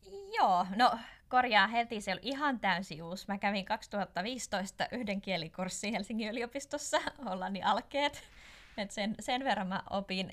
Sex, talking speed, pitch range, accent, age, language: female, 140 wpm, 180-230 Hz, native, 20-39, Finnish